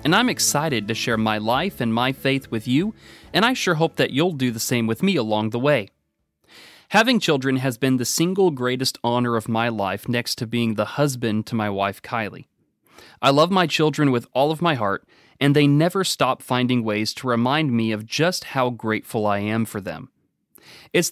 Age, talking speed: 30-49, 205 wpm